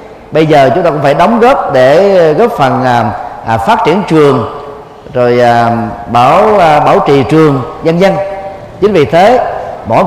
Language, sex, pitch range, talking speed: Vietnamese, male, 140-195 Hz, 150 wpm